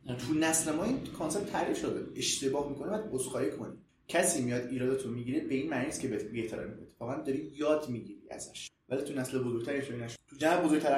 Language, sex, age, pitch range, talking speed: Persian, male, 30-49, 125-160 Hz, 190 wpm